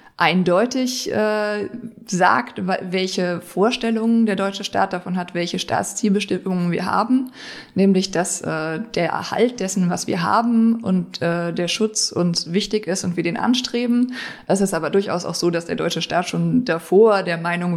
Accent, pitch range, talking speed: German, 170-220 Hz, 160 wpm